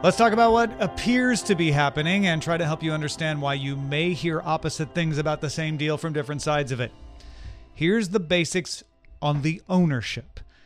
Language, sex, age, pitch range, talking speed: English, male, 40-59, 135-185 Hz, 195 wpm